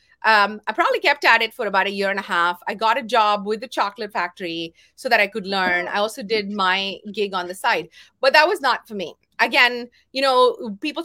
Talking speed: 240 wpm